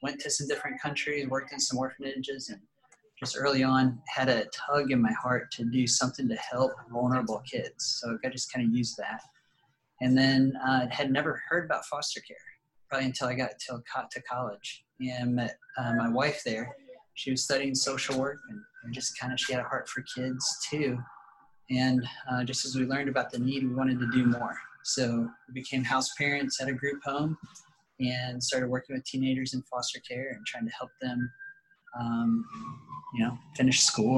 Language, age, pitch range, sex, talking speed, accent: English, 30-49, 125-140 Hz, male, 200 wpm, American